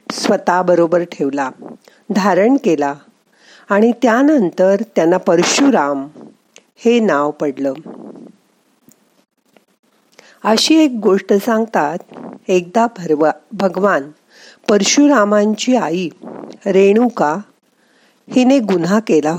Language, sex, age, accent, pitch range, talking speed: Marathi, female, 50-69, native, 170-235 Hz, 35 wpm